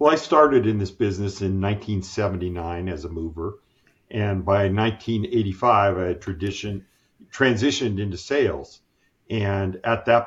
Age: 50-69